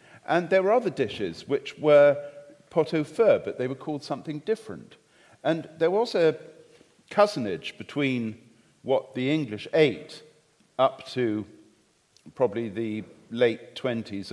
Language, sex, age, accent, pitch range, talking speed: English, male, 50-69, British, 115-160 Hz, 125 wpm